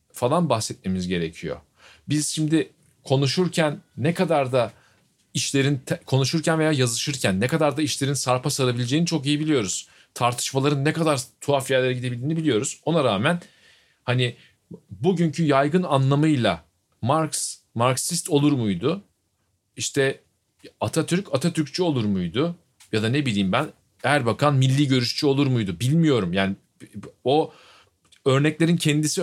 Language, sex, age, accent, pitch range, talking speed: Turkish, male, 40-59, native, 120-165 Hz, 120 wpm